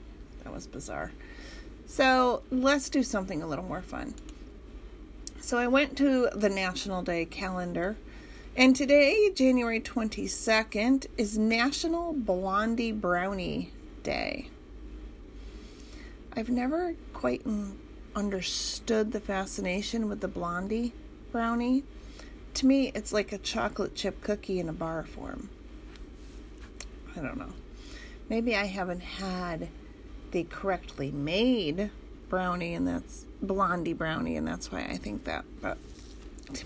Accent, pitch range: American, 180-245 Hz